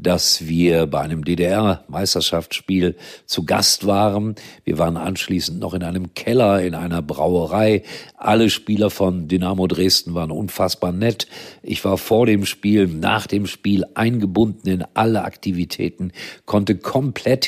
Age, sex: 50-69, male